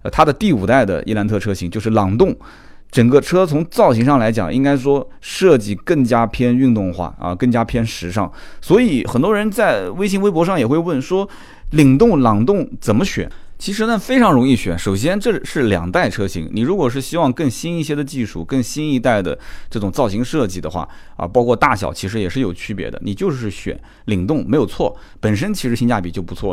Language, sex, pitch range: Chinese, male, 100-145 Hz